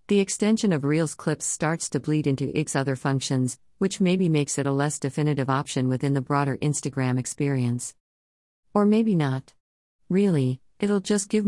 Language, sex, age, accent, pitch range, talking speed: English, female, 50-69, American, 130-165 Hz, 165 wpm